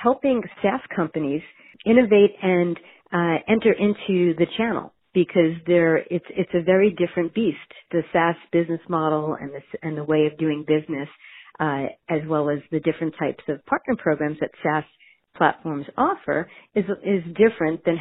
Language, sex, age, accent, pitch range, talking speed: English, female, 50-69, American, 155-185 Hz, 155 wpm